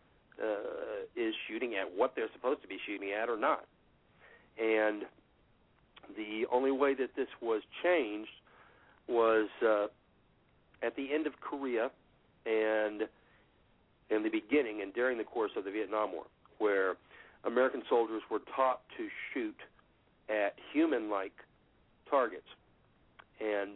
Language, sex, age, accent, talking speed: English, male, 50-69, American, 130 wpm